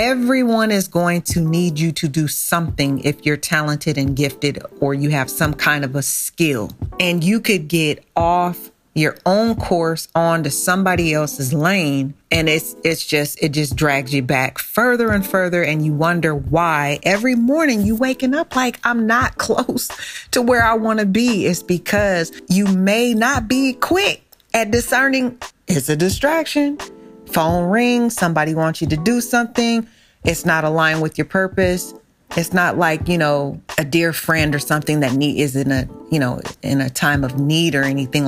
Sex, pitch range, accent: female, 150-210 Hz, American